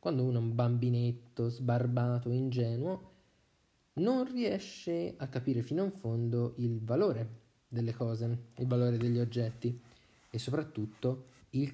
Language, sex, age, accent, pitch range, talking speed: Italian, male, 20-39, native, 115-130 Hz, 130 wpm